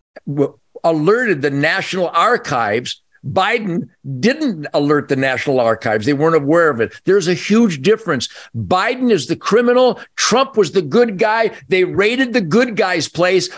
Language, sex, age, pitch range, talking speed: English, male, 50-69, 185-240 Hz, 150 wpm